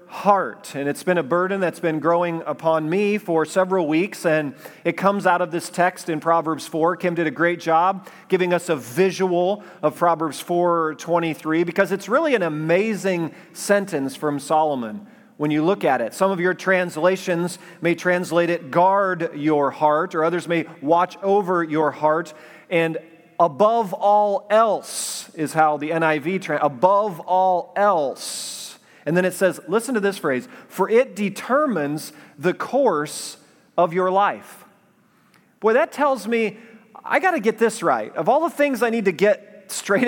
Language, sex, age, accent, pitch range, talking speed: English, male, 40-59, American, 170-220 Hz, 170 wpm